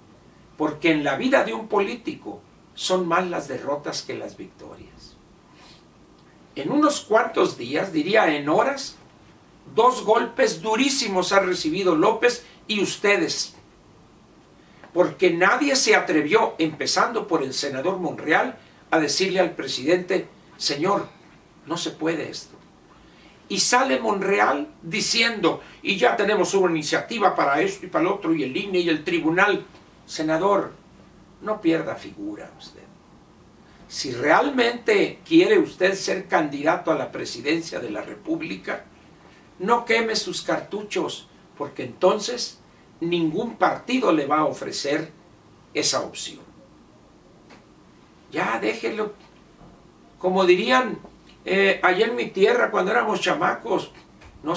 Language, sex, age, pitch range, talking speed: Spanish, male, 60-79, 170-240 Hz, 125 wpm